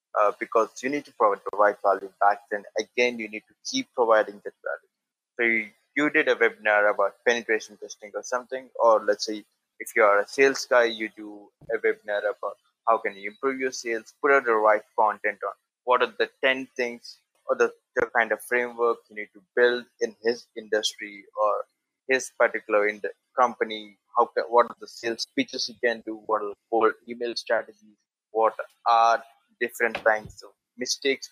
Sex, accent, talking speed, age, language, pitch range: male, Indian, 195 wpm, 20-39, English, 110-130 Hz